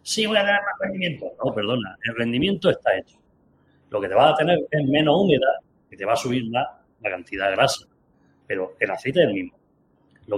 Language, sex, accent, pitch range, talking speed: Spanish, male, Spanish, 120-195 Hz, 215 wpm